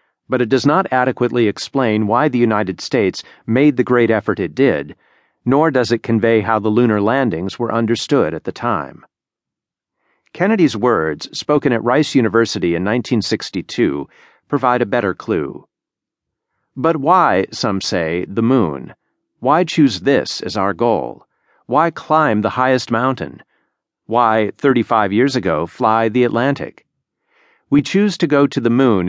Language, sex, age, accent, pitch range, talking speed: English, male, 40-59, American, 110-135 Hz, 150 wpm